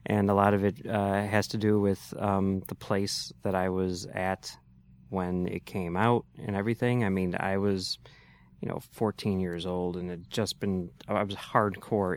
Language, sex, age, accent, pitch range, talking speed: English, male, 20-39, American, 95-105 Hz, 190 wpm